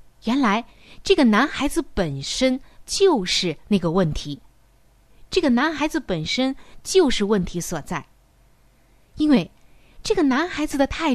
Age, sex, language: 20-39, female, Chinese